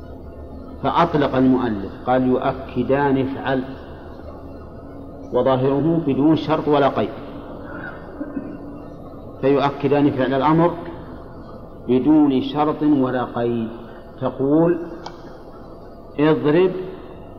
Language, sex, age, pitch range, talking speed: Arabic, male, 50-69, 105-145 Hz, 65 wpm